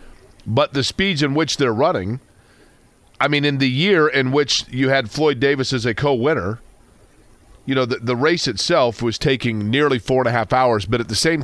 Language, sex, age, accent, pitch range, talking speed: English, male, 40-59, American, 110-140 Hz, 205 wpm